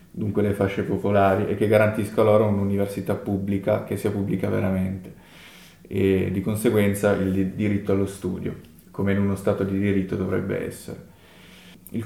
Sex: male